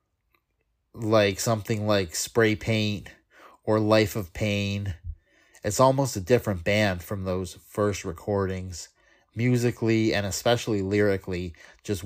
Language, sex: English, male